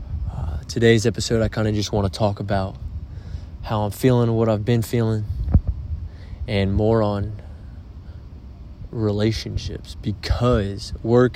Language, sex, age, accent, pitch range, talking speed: English, male, 20-39, American, 90-110 Hz, 120 wpm